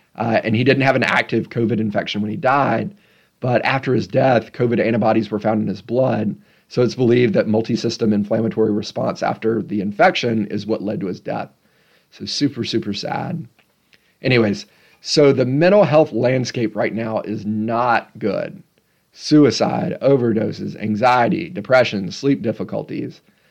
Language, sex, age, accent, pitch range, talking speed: English, male, 40-59, American, 110-130 Hz, 155 wpm